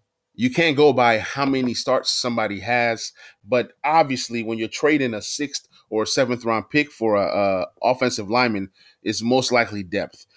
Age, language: 20-39, English